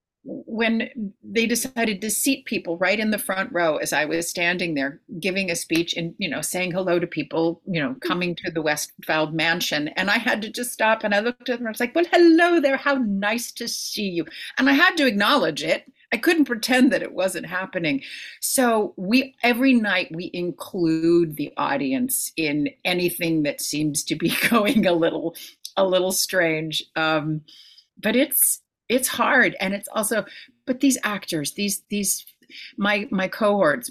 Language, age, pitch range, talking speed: English, 40-59, 165-235 Hz, 185 wpm